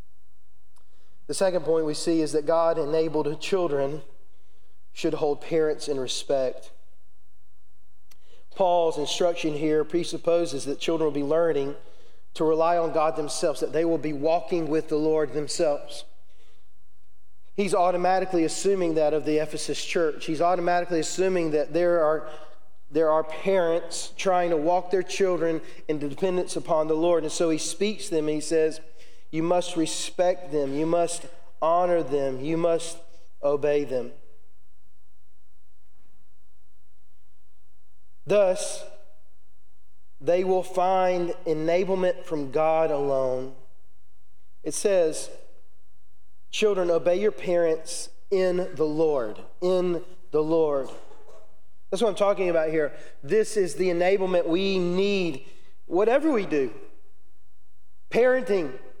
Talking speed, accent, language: 120 wpm, American, English